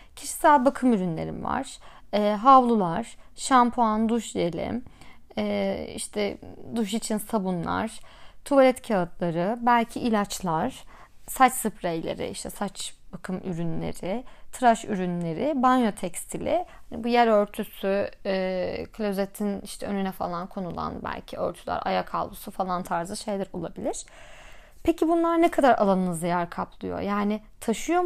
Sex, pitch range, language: female, 205-285 Hz, Turkish